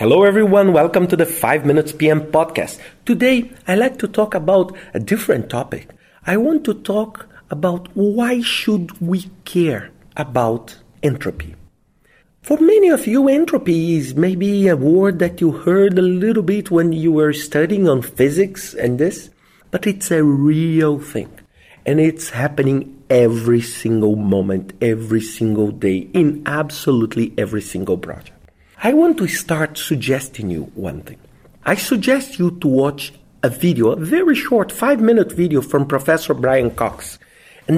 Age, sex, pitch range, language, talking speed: 50-69, male, 140-205 Hz, English, 150 wpm